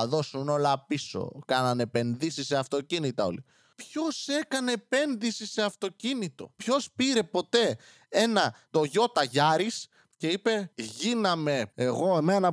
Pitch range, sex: 150-220 Hz, male